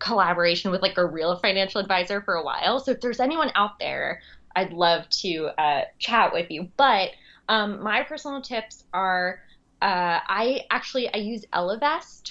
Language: English